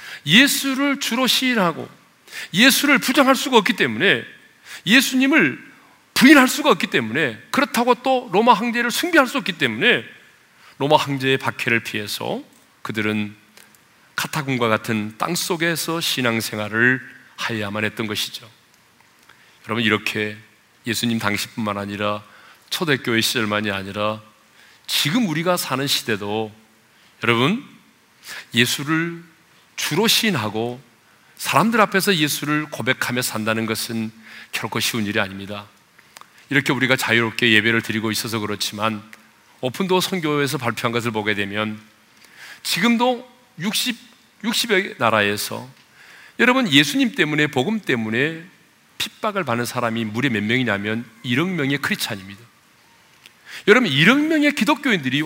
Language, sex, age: Korean, male, 40-59